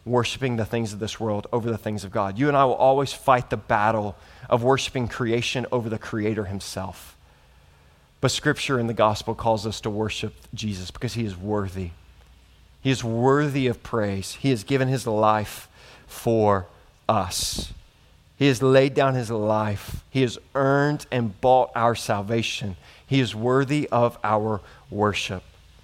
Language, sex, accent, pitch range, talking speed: English, male, American, 105-140 Hz, 165 wpm